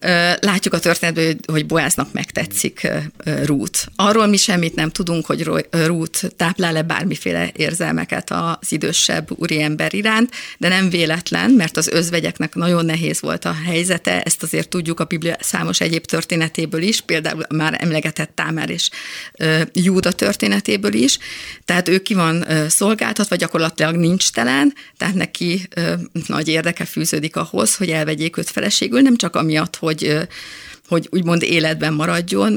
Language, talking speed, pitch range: Hungarian, 140 wpm, 160-190 Hz